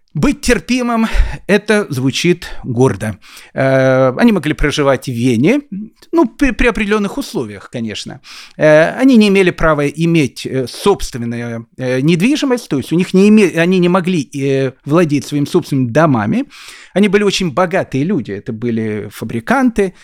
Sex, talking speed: male, 115 wpm